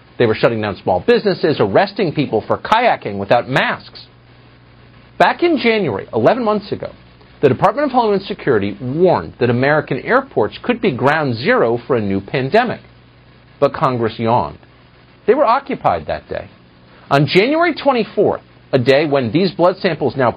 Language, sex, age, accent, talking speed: English, male, 50-69, American, 155 wpm